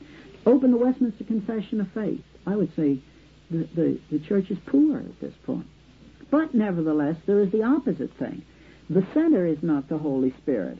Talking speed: 180 wpm